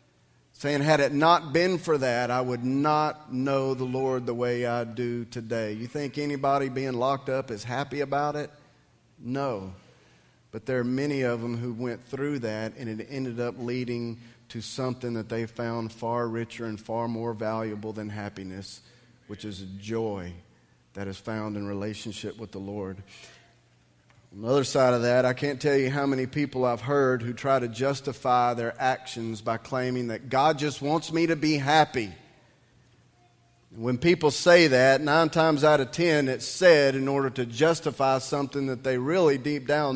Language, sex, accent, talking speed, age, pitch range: English, male, American, 180 wpm, 40-59, 110-135 Hz